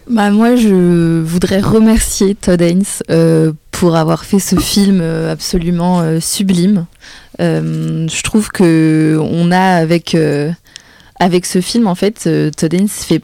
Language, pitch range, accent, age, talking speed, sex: French, 160-190 Hz, French, 20-39, 150 wpm, female